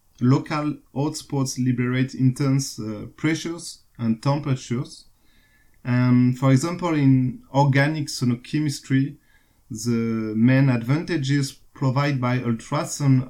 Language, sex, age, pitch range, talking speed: English, male, 30-49, 115-145 Hz, 95 wpm